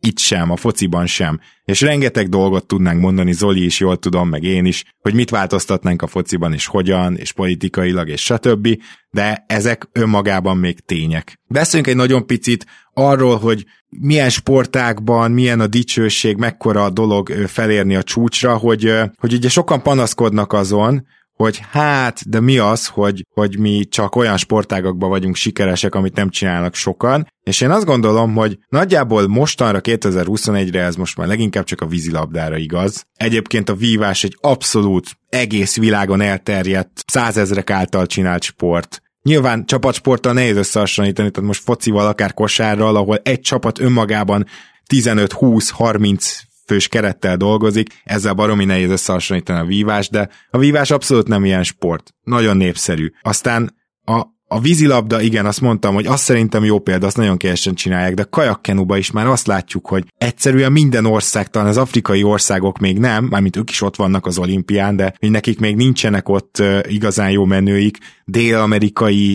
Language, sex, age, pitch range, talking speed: Hungarian, male, 20-39, 95-115 Hz, 155 wpm